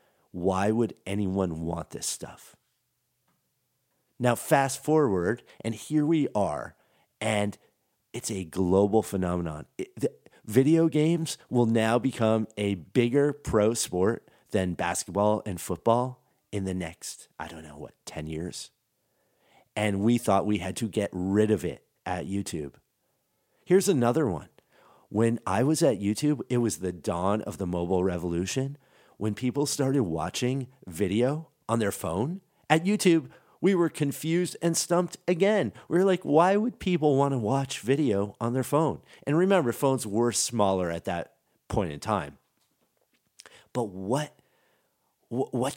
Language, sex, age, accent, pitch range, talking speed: English, male, 40-59, American, 100-150 Hz, 145 wpm